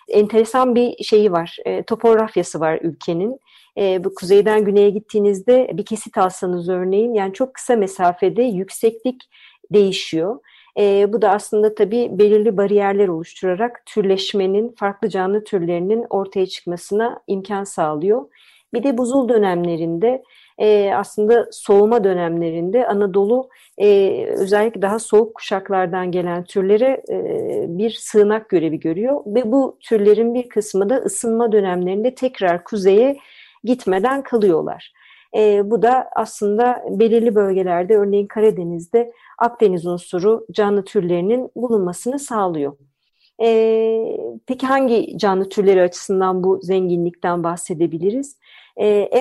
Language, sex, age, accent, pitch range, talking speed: Turkish, female, 50-69, native, 190-235 Hz, 115 wpm